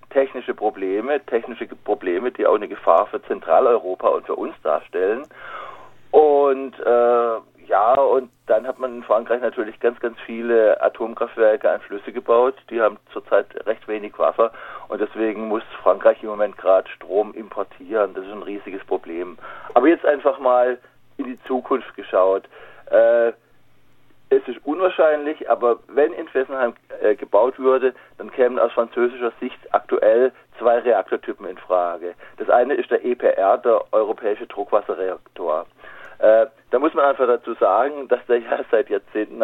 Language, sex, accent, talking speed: German, male, German, 150 wpm